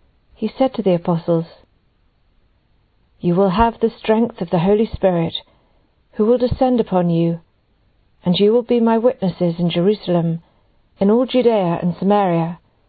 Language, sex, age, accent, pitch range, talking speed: English, female, 50-69, British, 170-225 Hz, 150 wpm